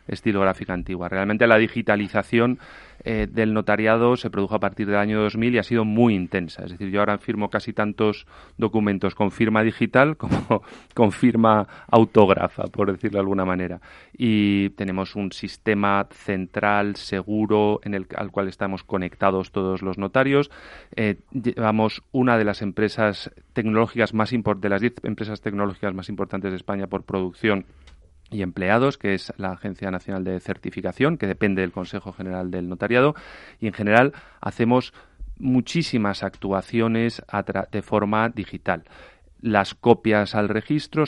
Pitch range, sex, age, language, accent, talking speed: 100-115 Hz, male, 30-49, Spanish, Spanish, 150 wpm